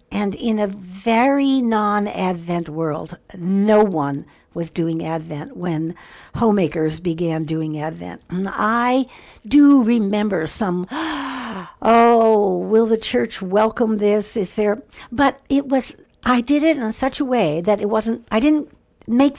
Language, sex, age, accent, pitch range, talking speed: English, female, 60-79, American, 175-235 Hz, 140 wpm